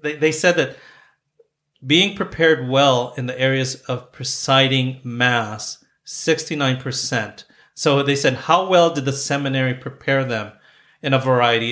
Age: 40-59